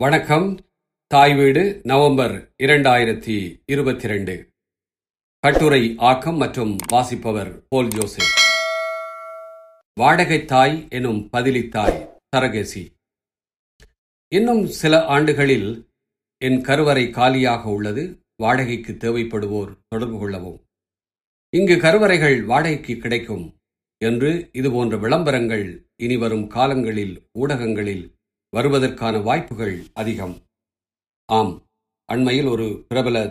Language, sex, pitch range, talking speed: Tamil, male, 105-140 Hz, 80 wpm